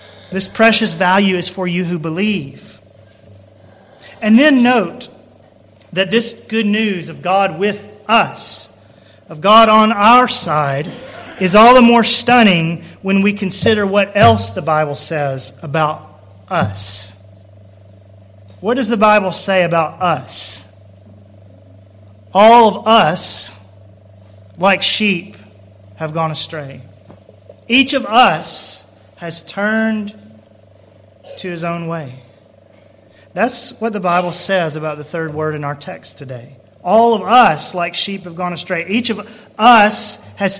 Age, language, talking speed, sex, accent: 40-59, English, 130 wpm, male, American